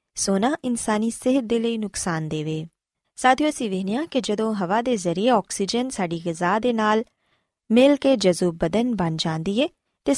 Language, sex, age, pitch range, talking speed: Punjabi, female, 20-39, 180-255 Hz, 160 wpm